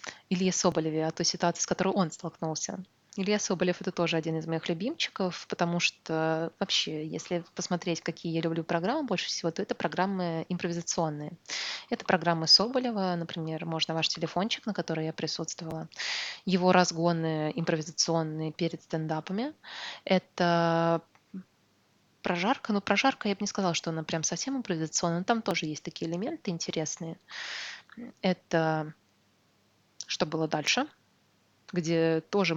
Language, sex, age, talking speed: Russian, female, 20-39, 140 wpm